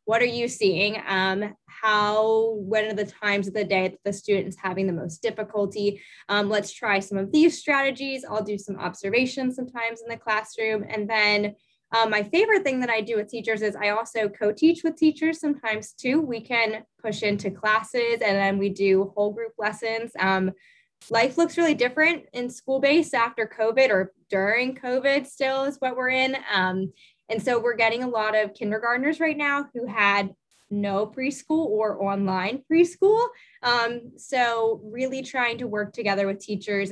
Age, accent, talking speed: 10-29, American, 180 wpm